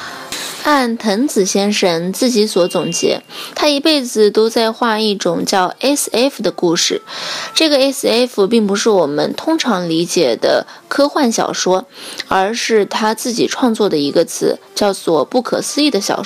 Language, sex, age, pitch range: Chinese, female, 20-39, 195-270 Hz